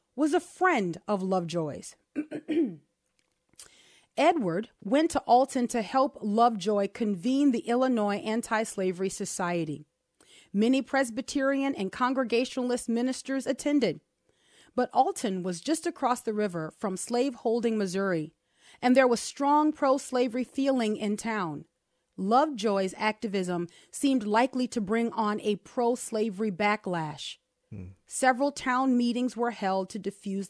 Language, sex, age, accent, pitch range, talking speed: English, female, 30-49, American, 195-260 Hz, 115 wpm